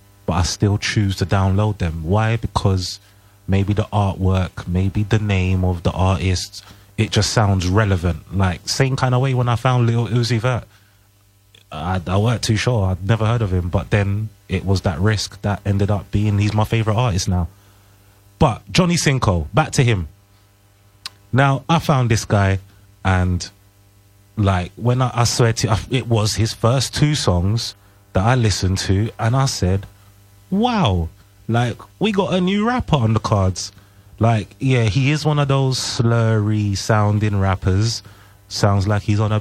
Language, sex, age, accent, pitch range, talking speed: English, male, 30-49, British, 95-110 Hz, 175 wpm